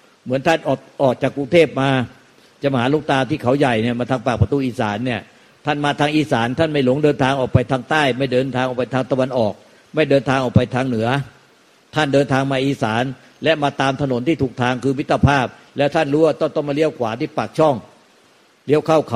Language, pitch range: Thai, 125-150 Hz